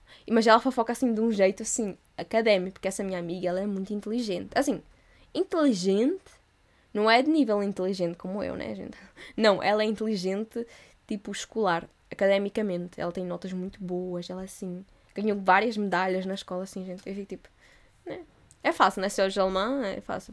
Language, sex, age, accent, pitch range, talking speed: Portuguese, female, 10-29, Brazilian, 190-230 Hz, 185 wpm